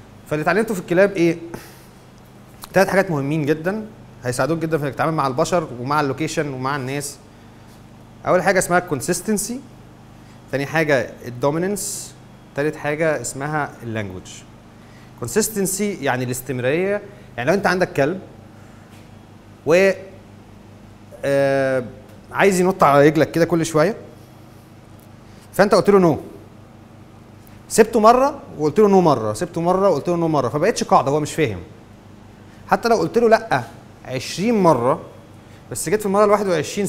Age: 30-49